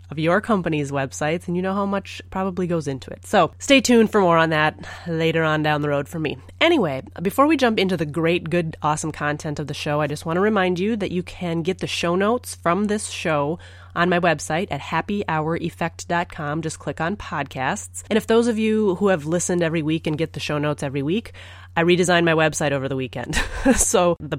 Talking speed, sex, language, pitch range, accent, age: 225 wpm, female, English, 145-180 Hz, American, 30-49